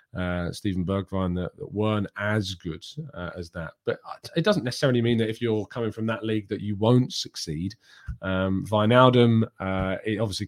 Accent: British